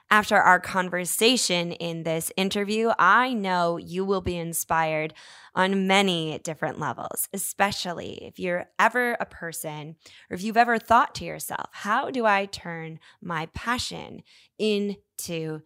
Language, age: English, 10-29